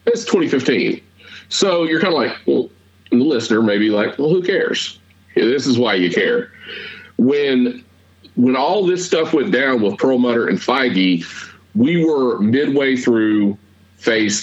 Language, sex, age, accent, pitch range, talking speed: English, male, 40-59, American, 100-130 Hz, 160 wpm